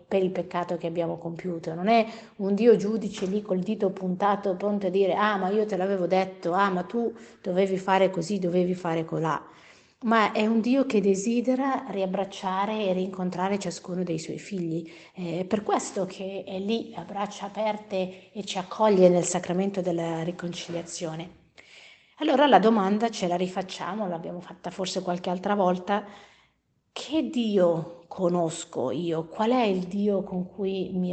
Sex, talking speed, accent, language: female, 165 wpm, native, Italian